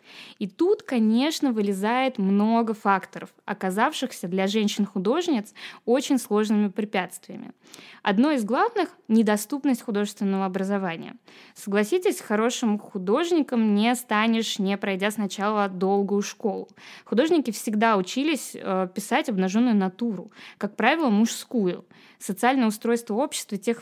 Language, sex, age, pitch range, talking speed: Russian, female, 20-39, 200-260 Hz, 105 wpm